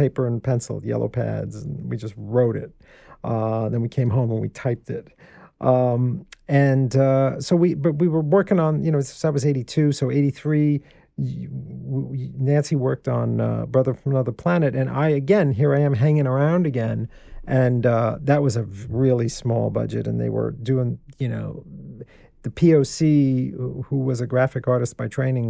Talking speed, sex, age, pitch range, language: 180 wpm, male, 40-59, 120-145 Hz, English